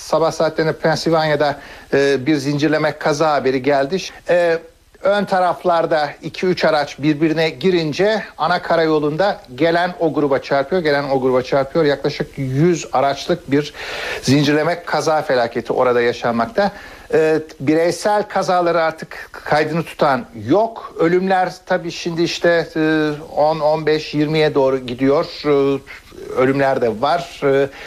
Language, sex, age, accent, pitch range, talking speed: Turkish, male, 60-79, native, 140-175 Hz, 110 wpm